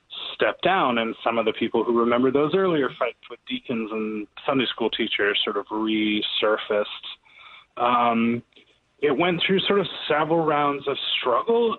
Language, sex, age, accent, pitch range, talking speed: English, male, 30-49, American, 115-175 Hz, 160 wpm